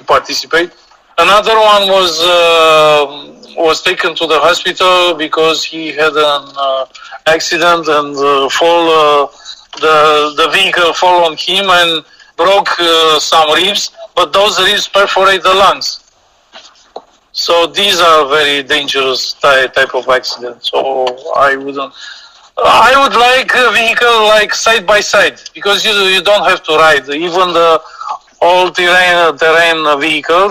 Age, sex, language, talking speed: 40-59, male, Romanian, 140 wpm